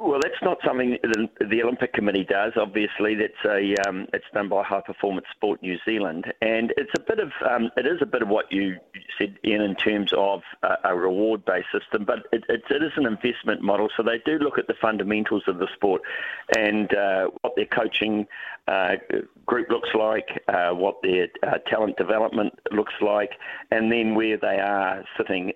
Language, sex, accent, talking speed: English, male, Australian, 195 wpm